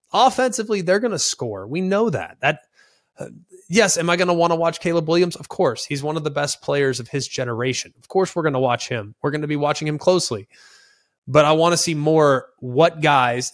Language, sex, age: English, male, 20-39